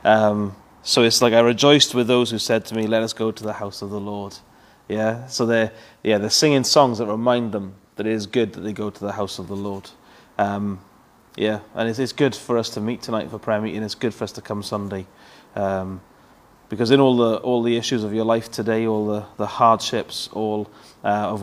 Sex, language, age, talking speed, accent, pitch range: male, English, 30-49, 235 wpm, British, 105-120 Hz